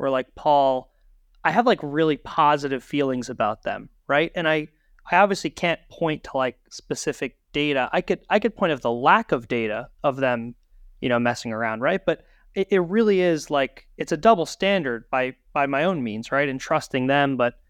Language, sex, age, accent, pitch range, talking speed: English, male, 30-49, American, 135-165 Hz, 200 wpm